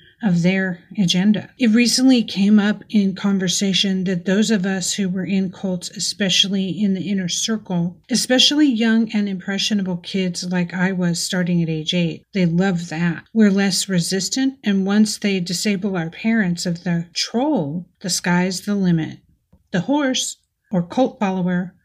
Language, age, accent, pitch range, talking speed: English, 50-69, American, 180-210 Hz, 160 wpm